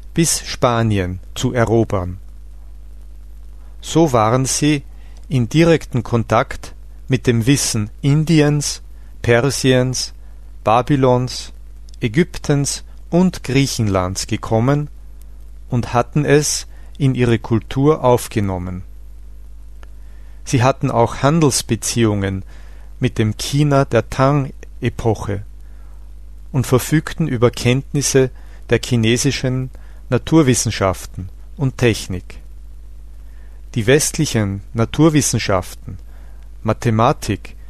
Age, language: 40-59, German